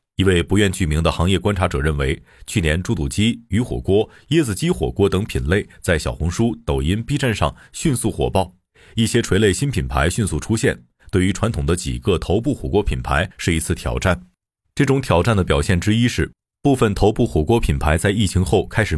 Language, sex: Chinese, male